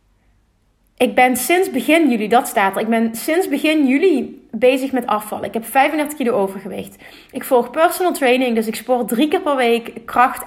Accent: Dutch